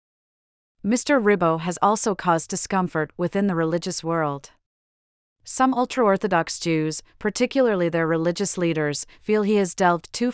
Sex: female